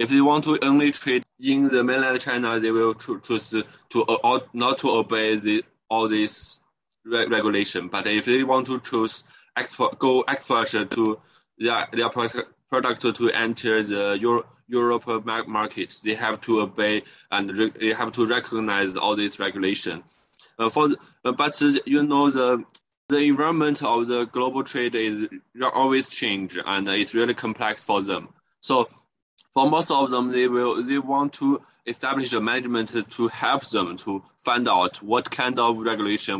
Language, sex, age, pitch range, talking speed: English, male, 20-39, 105-130 Hz, 170 wpm